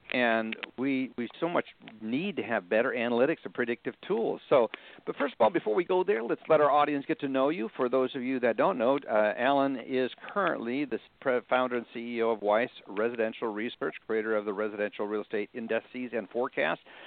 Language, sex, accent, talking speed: English, male, American, 205 wpm